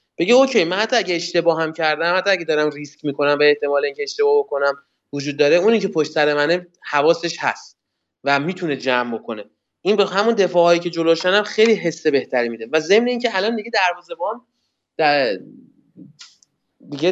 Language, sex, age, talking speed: Persian, male, 20-39, 175 wpm